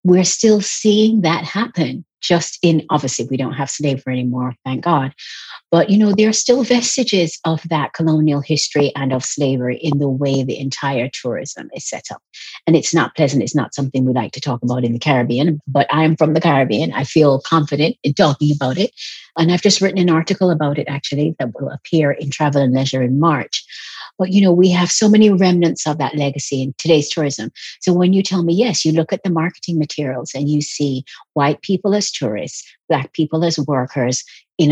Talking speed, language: 210 wpm, English